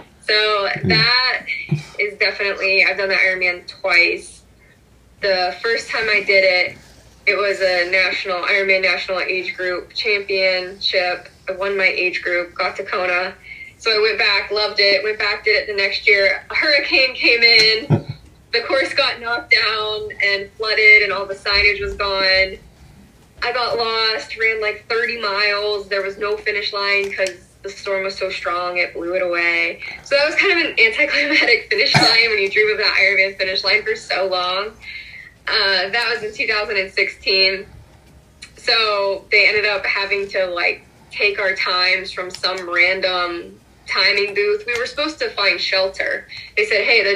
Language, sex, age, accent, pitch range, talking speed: English, female, 10-29, American, 185-215 Hz, 170 wpm